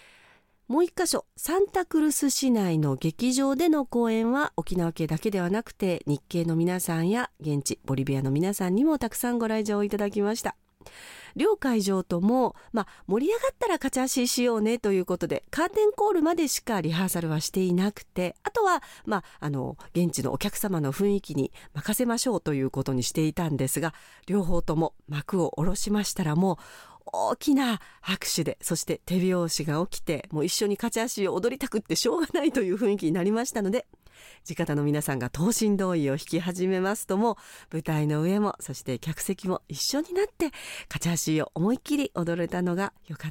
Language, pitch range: Japanese, 165-240 Hz